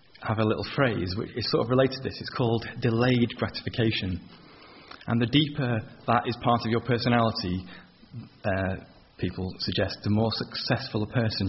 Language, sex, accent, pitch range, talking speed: English, male, British, 100-120 Hz, 165 wpm